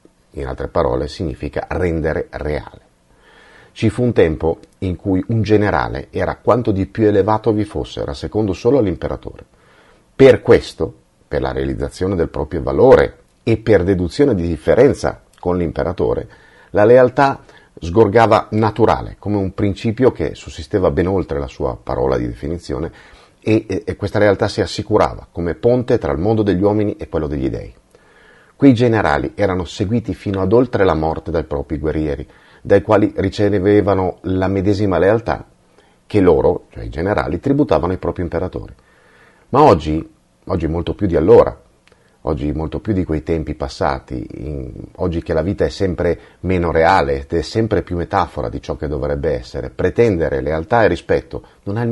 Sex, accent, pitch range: male, native, 80-110 Hz